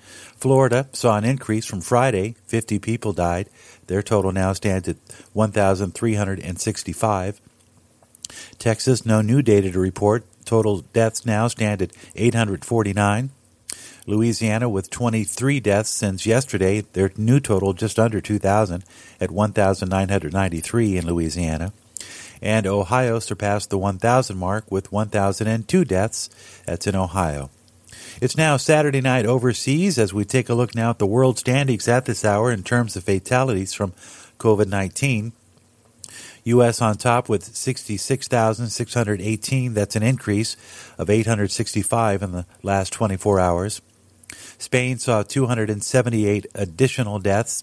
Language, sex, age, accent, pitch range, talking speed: English, male, 50-69, American, 100-115 Hz, 125 wpm